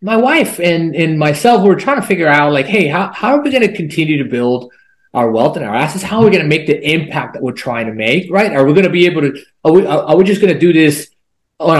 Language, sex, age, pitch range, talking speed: English, male, 30-49, 145-190 Hz, 290 wpm